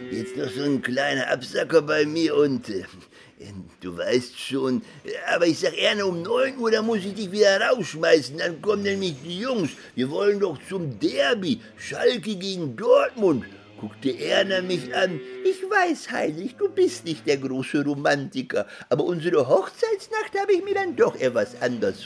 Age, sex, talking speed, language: 50-69, male, 170 wpm, German